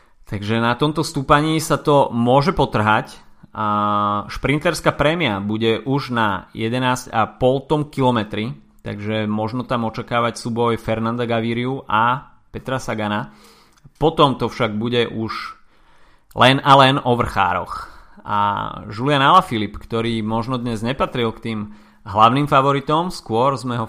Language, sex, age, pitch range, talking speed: Slovak, male, 30-49, 110-140 Hz, 125 wpm